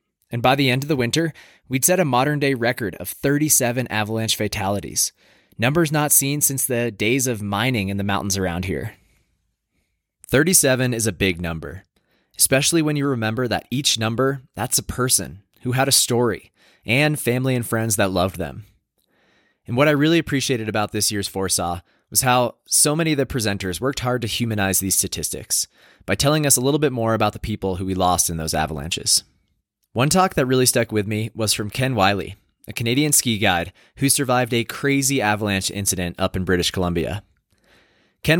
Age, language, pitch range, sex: 20-39, English, 95-130 Hz, male